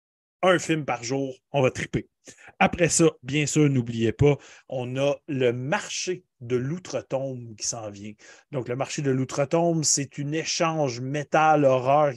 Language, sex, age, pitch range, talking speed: French, male, 30-49, 130-165 Hz, 155 wpm